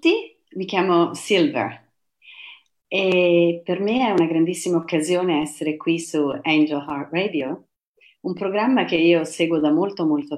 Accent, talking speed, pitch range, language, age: Italian, 140 wpm, 150-190 Hz, English, 40-59